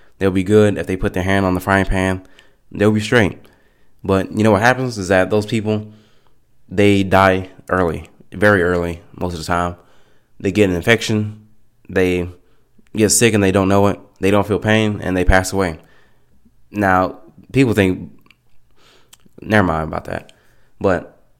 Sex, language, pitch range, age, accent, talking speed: male, English, 90-105 Hz, 20-39, American, 170 wpm